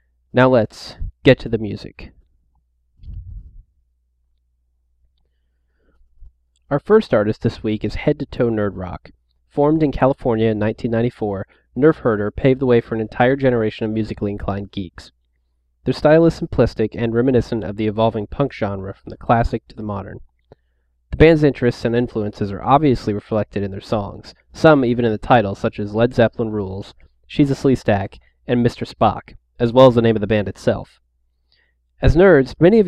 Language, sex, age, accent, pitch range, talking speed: English, male, 20-39, American, 95-125 Hz, 170 wpm